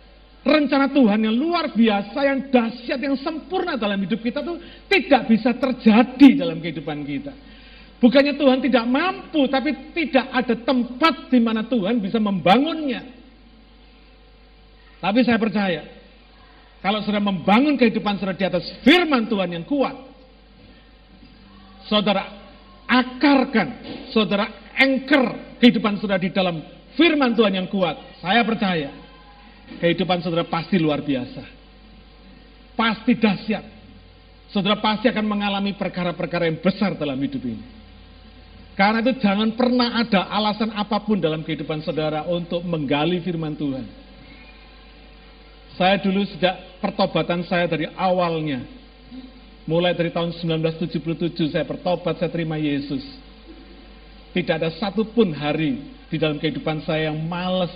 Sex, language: male, Indonesian